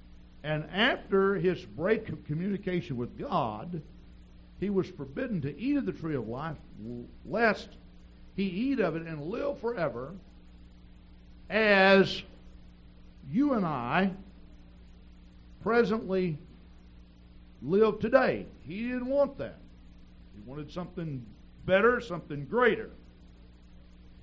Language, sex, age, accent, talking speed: English, male, 60-79, American, 105 wpm